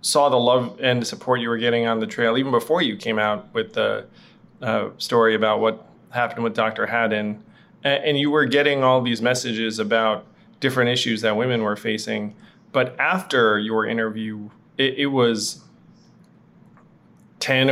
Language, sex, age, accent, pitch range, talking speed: English, male, 20-39, American, 110-130 Hz, 165 wpm